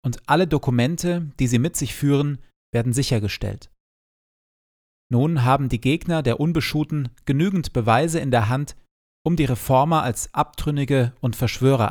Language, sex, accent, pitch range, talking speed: German, male, German, 110-145 Hz, 140 wpm